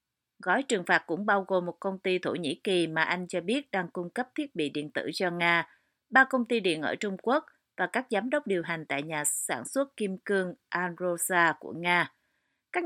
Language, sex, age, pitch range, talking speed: Vietnamese, female, 30-49, 170-215 Hz, 225 wpm